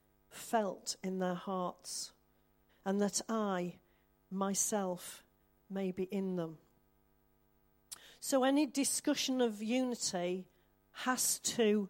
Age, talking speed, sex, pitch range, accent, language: 40-59, 95 wpm, female, 180-235 Hz, British, English